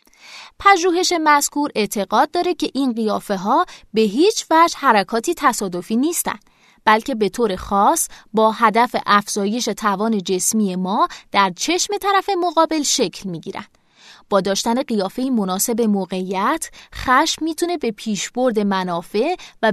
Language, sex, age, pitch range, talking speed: Persian, female, 20-39, 200-285 Hz, 130 wpm